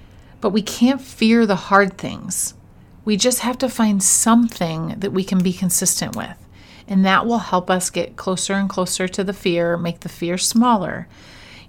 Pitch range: 180-225 Hz